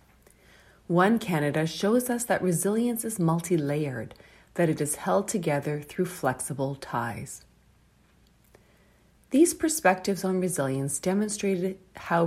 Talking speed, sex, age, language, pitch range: 110 wpm, female, 40-59, English, 140-195 Hz